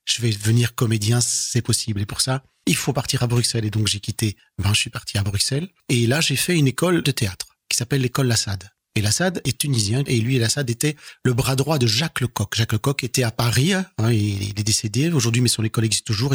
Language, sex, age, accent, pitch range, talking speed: French, male, 40-59, French, 115-135 Hz, 240 wpm